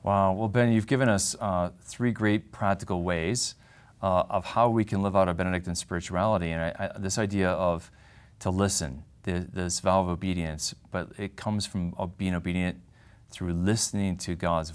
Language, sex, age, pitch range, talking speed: English, male, 40-59, 90-110 Hz, 180 wpm